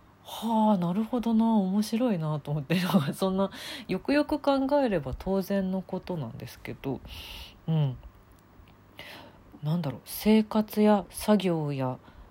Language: Japanese